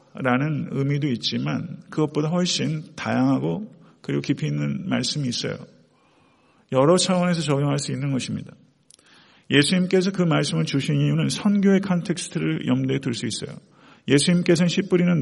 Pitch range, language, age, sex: 140-175 Hz, Korean, 40-59, male